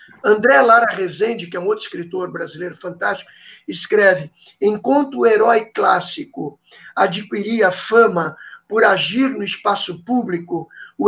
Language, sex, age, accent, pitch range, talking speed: Portuguese, male, 50-69, Brazilian, 190-255 Hz, 125 wpm